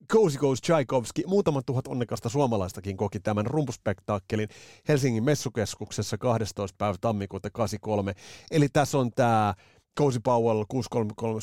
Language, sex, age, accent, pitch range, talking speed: Finnish, male, 30-49, native, 105-135 Hz, 115 wpm